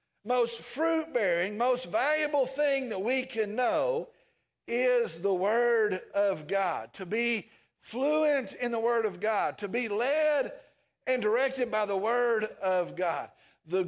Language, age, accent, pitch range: English, 50-69, American, 210-275 Hz